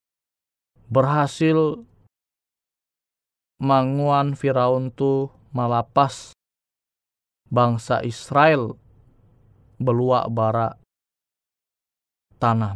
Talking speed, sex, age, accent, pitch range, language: 45 wpm, male, 20-39, native, 110-135 Hz, Indonesian